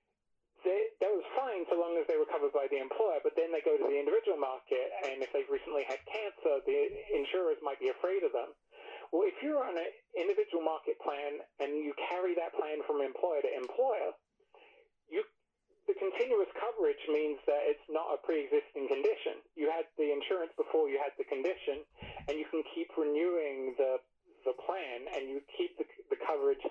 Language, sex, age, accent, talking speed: English, male, 40-59, American, 185 wpm